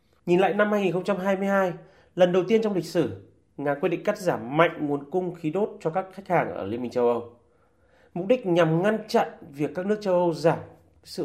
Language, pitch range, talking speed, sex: Vietnamese, 145-200 Hz, 220 wpm, male